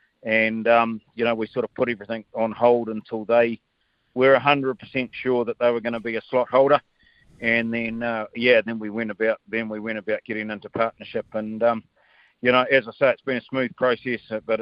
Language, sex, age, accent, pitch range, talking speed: English, male, 50-69, Australian, 110-125 Hz, 225 wpm